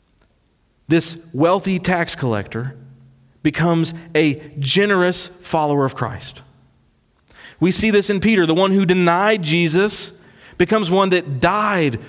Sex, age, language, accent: male, 40-59, English, American